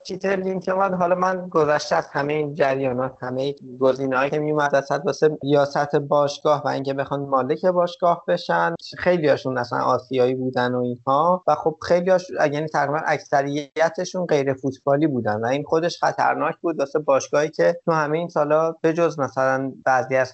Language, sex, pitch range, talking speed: Persian, male, 140-175 Hz, 165 wpm